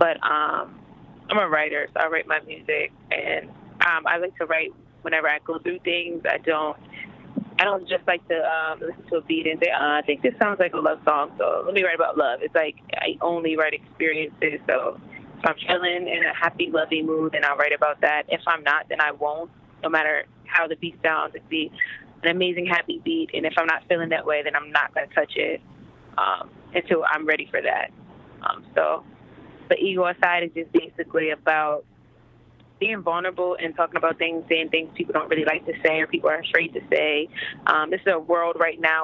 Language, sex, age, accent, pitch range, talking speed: English, female, 20-39, American, 155-175 Hz, 225 wpm